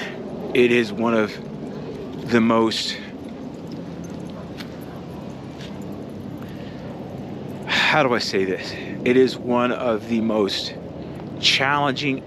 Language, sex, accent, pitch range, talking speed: English, male, American, 105-150 Hz, 90 wpm